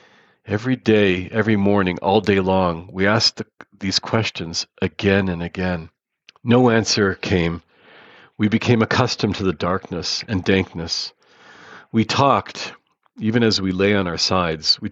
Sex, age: male, 40-59